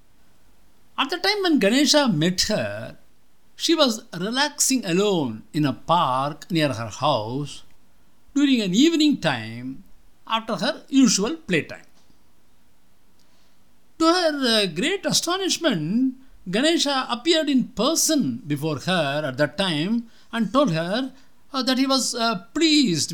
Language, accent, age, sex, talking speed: English, Indian, 60-79, male, 115 wpm